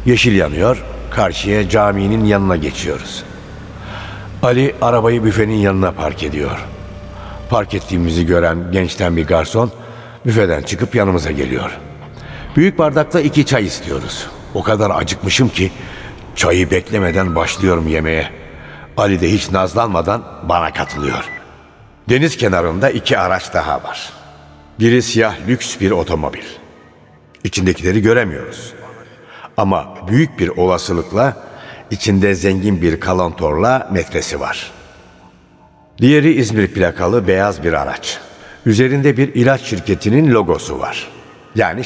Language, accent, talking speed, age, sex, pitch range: Turkish, native, 110 wpm, 60-79, male, 85-115 Hz